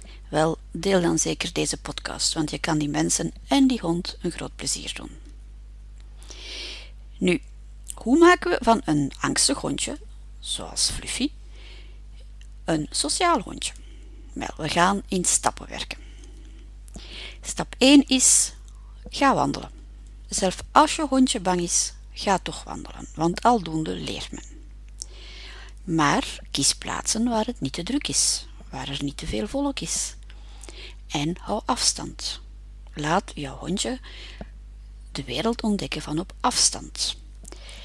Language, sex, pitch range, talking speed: Dutch, female, 160-250 Hz, 130 wpm